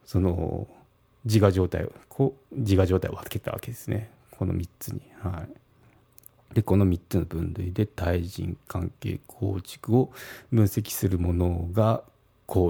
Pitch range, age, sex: 95-125 Hz, 40-59, male